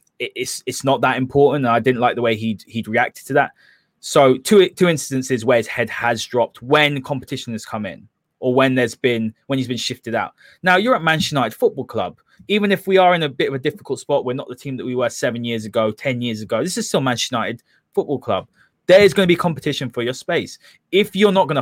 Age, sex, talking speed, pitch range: 20-39, male, 245 wpm, 125-160 Hz